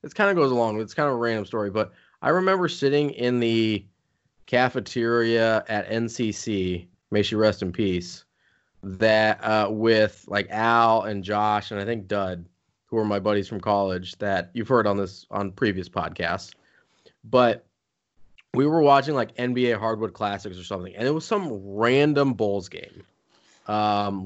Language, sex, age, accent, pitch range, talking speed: English, male, 20-39, American, 105-130 Hz, 170 wpm